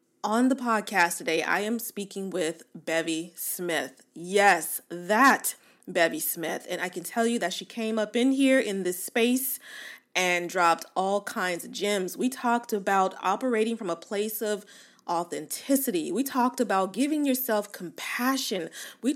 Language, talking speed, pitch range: English, 155 wpm, 180-265 Hz